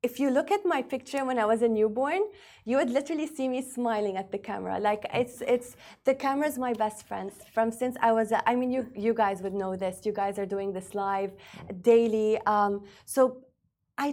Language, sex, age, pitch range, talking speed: English, female, 20-39, 200-245 Hz, 210 wpm